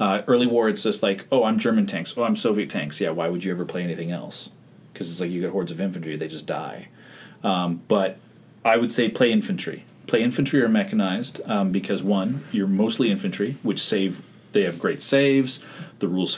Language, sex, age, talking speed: English, male, 30-49, 215 wpm